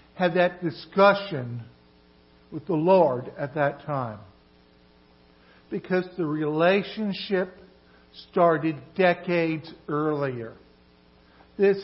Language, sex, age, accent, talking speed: English, male, 60-79, American, 80 wpm